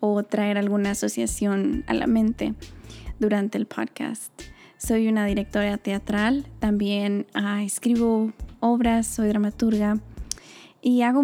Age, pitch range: 20-39, 200-235 Hz